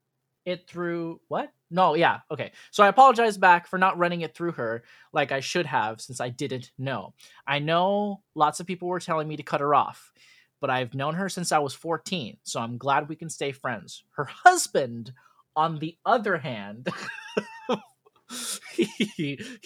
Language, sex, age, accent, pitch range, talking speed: English, male, 20-39, American, 135-190 Hz, 175 wpm